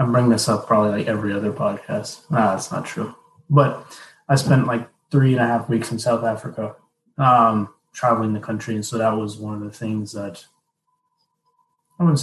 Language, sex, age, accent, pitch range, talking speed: English, male, 20-39, American, 110-135 Hz, 195 wpm